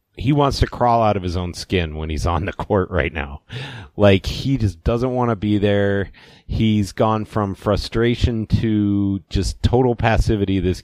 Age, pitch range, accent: 30-49, 90-115 Hz, American